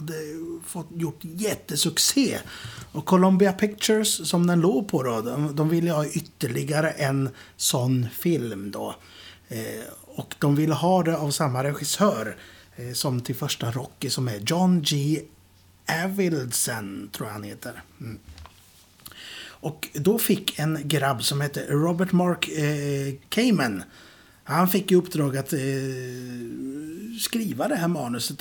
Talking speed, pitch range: 135 wpm, 130-175 Hz